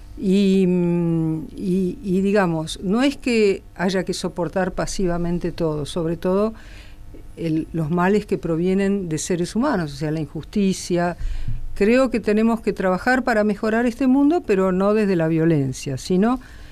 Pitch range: 160-220 Hz